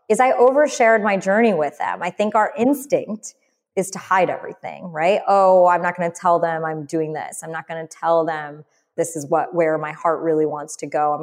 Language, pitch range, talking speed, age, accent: English, 170-230 Hz, 230 wpm, 20-39, American